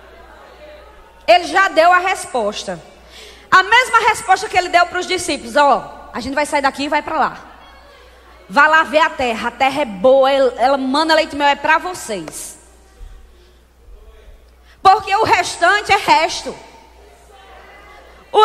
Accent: Brazilian